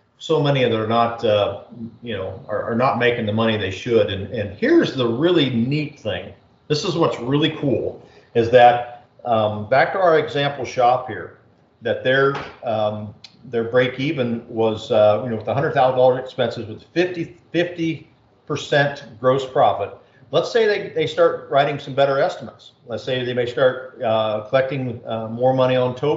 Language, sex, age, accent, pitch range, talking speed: English, male, 50-69, American, 115-140 Hz, 175 wpm